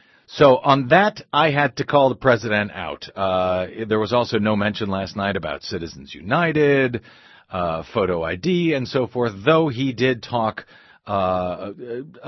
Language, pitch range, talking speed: English, 105-145 Hz, 155 wpm